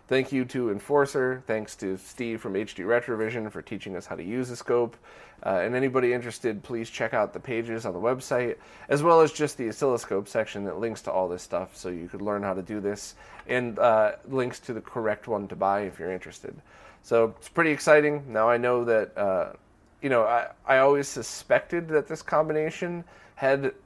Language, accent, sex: English, American, male